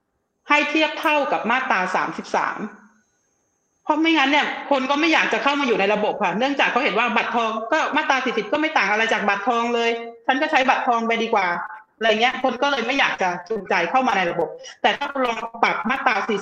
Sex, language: female, Thai